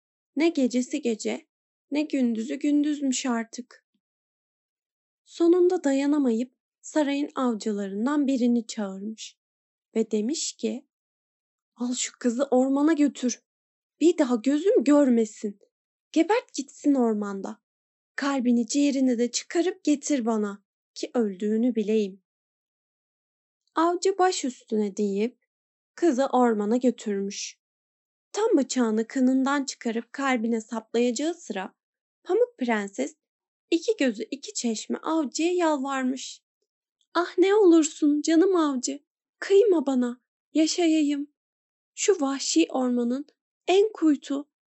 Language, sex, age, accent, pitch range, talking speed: Turkish, female, 10-29, native, 235-310 Hz, 95 wpm